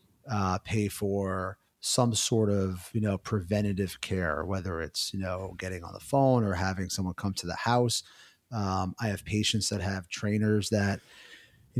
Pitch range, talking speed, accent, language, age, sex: 95-110 Hz, 175 wpm, American, English, 30-49, male